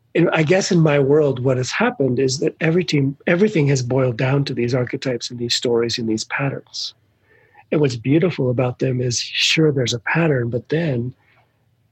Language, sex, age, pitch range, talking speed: English, male, 40-59, 120-145 Hz, 190 wpm